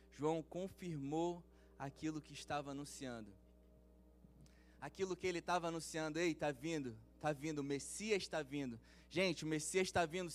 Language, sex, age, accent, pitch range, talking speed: Portuguese, male, 20-39, Brazilian, 140-180 Hz, 145 wpm